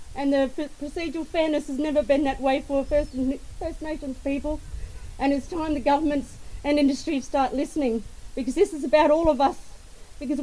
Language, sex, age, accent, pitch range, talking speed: English, female, 40-59, Australian, 285-340 Hz, 175 wpm